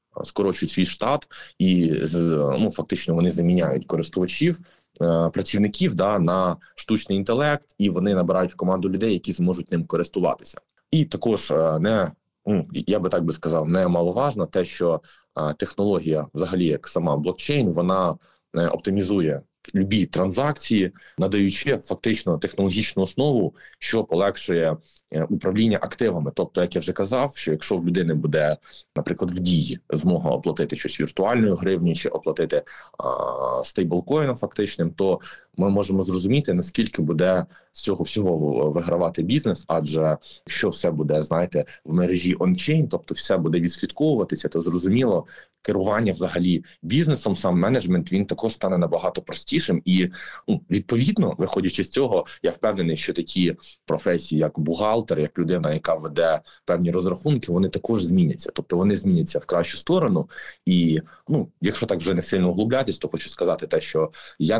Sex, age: male, 20-39